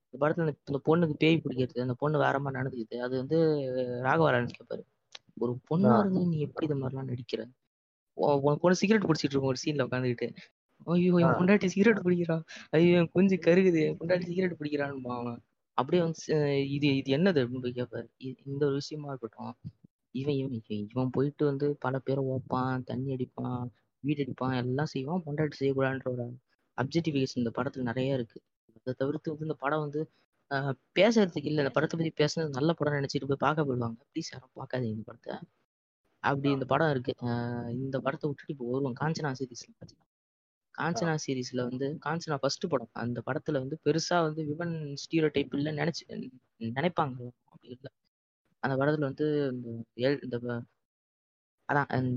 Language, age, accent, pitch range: Tamil, 20-39, native, 125-155 Hz